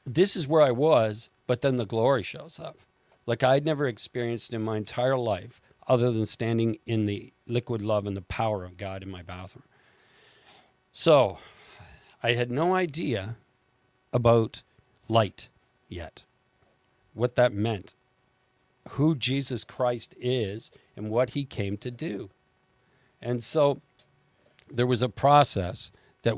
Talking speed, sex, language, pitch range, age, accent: 140 wpm, male, English, 110-140 Hz, 50-69, American